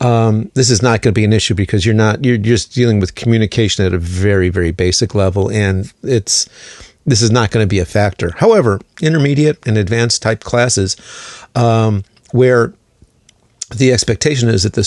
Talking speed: 185 wpm